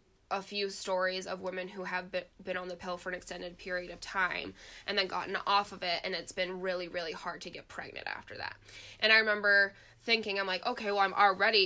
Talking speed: 230 wpm